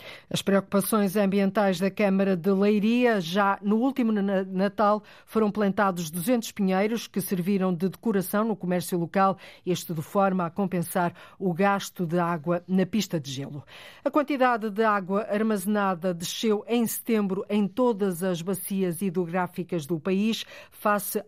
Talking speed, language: 145 wpm, Portuguese